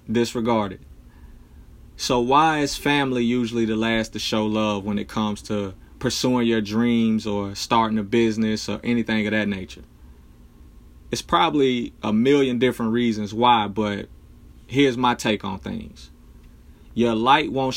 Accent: American